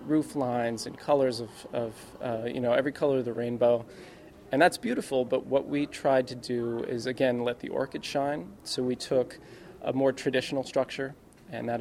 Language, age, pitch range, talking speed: English, 30-49, 120-140 Hz, 195 wpm